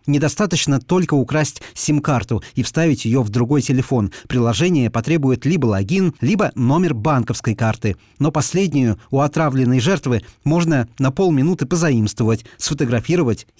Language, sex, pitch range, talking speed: Russian, male, 115-155 Hz, 125 wpm